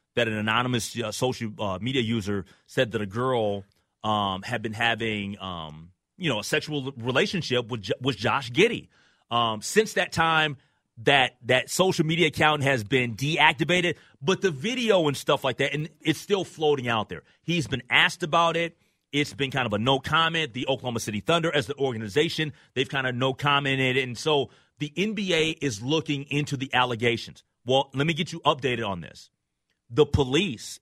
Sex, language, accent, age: male, English, American, 30-49